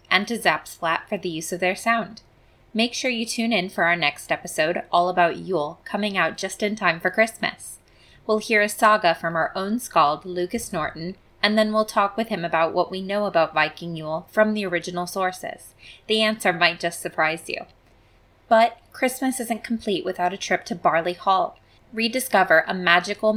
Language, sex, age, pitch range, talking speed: English, female, 20-39, 170-215 Hz, 190 wpm